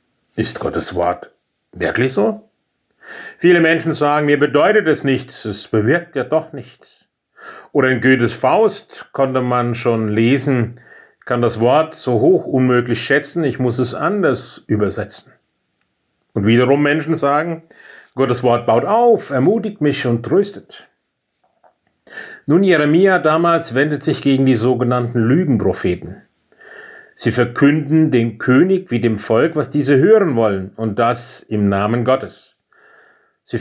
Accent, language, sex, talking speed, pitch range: German, German, male, 135 wpm, 120-155 Hz